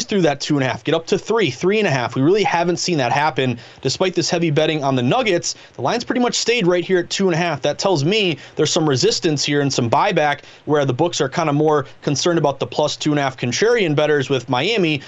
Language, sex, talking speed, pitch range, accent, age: English, male, 270 wpm, 135-175 Hz, American, 30-49